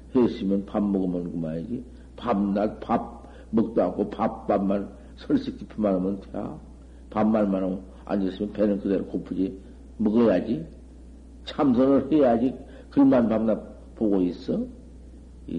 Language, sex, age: Korean, male, 50-69